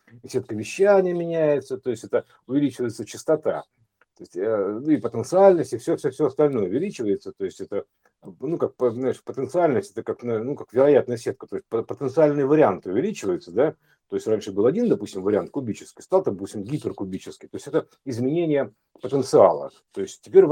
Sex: male